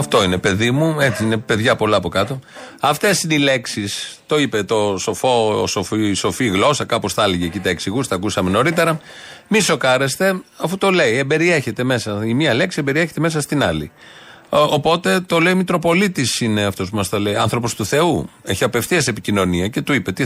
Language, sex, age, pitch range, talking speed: Greek, male, 40-59, 105-145 Hz, 195 wpm